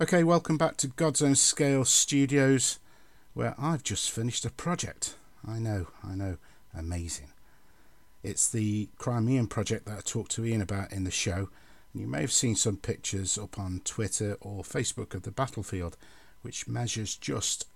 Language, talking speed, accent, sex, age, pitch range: English, 170 wpm, British, male, 50-69, 95-115 Hz